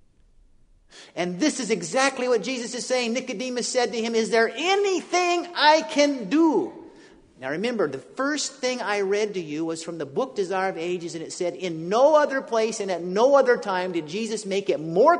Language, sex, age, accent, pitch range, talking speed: Danish, male, 50-69, American, 165-270 Hz, 200 wpm